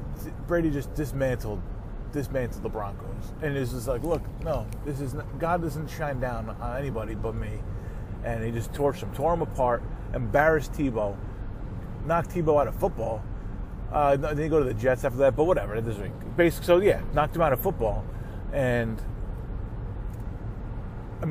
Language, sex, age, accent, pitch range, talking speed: English, male, 30-49, American, 110-140 Hz, 170 wpm